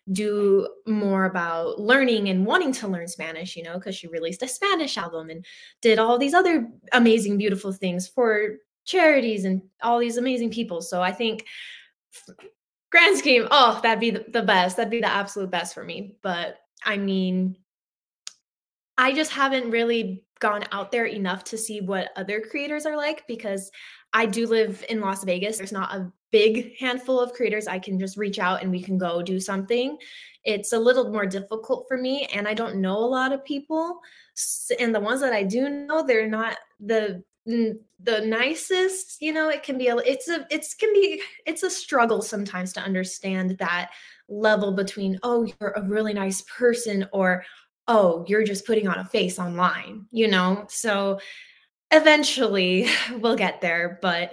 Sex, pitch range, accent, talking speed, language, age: female, 195-250 Hz, American, 180 wpm, English, 20-39